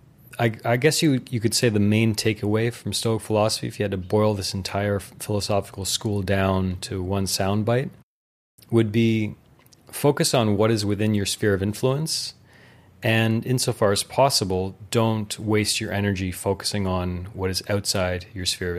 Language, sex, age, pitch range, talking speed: English, male, 30-49, 95-115 Hz, 170 wpm